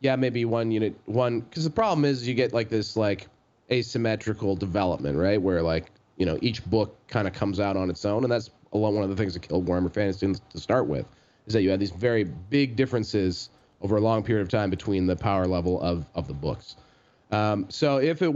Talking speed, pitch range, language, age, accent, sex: 225 wpm, 90-110 Hz, English, 30-49, American, male